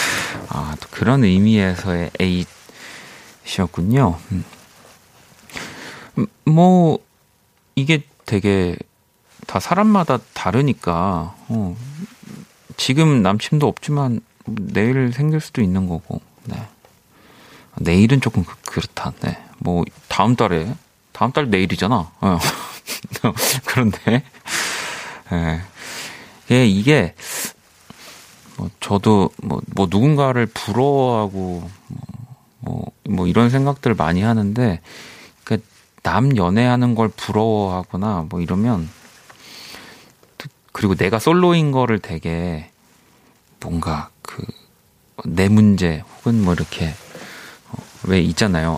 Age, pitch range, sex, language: 30-49, 90-130 Hz, male, Korean